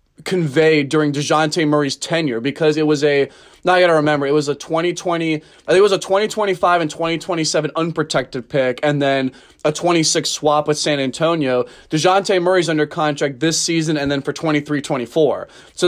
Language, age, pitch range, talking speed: English, 20-39, 145-175 Hz, 180 wpm